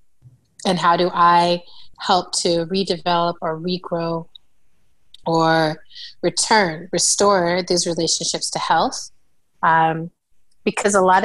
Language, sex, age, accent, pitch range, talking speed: English, female, 30-49, American, 165-190 Hz, 105 wpm